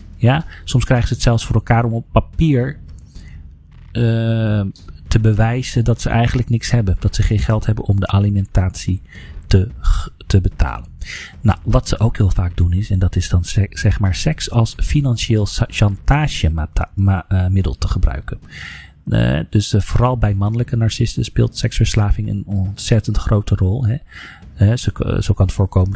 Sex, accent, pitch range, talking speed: male, Dutch, 95-110 Hz, 160 wpm